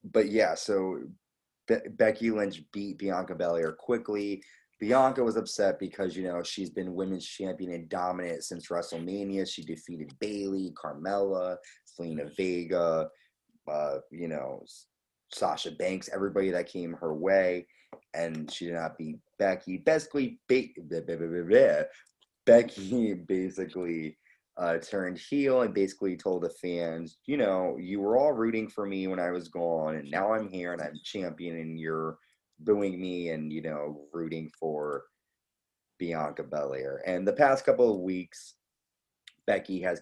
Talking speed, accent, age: 150 wpm, American, 30-49